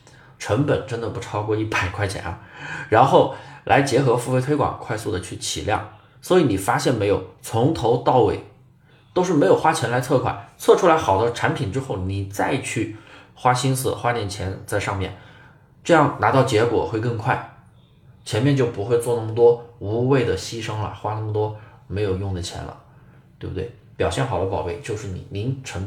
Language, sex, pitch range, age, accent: Chinese, male, 105-140 Hz, 20-39, native